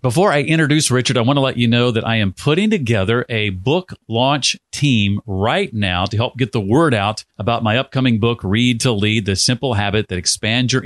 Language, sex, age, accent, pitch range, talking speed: English, male, 40-59, American, 110-140 Hz, 220 wpm